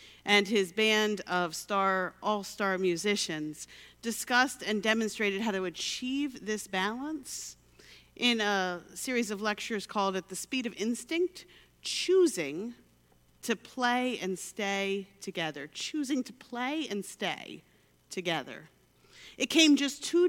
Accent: American